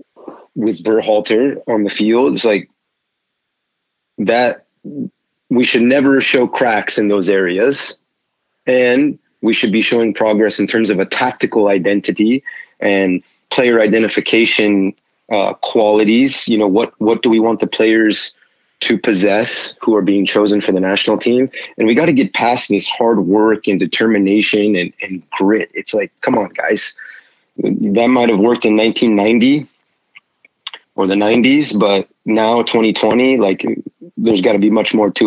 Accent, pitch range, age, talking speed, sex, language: American, 100-115 Hz, 30-49, 155 wpm, male, English